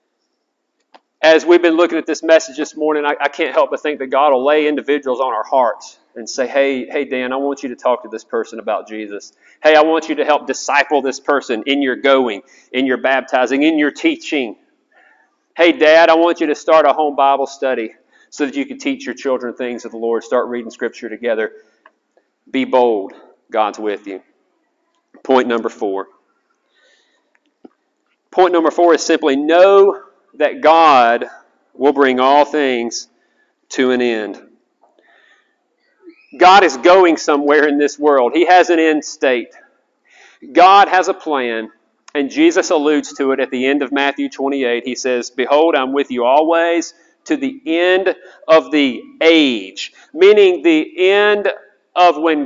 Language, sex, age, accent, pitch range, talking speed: English, male, 40-59, American, 135-175 Hz, 170 wpm